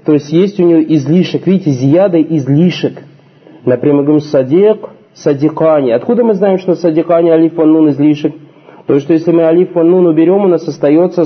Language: Russian